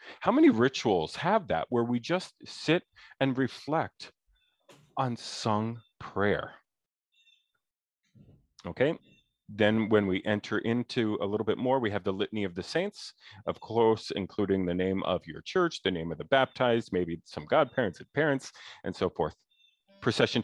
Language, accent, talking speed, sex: English, American, 155 wpm, male